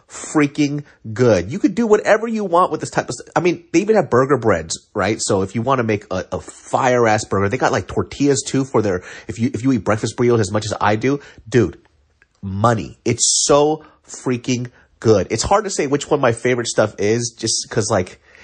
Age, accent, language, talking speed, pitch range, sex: 30-49, American, English, 230 wpm, 105-140 Hz, male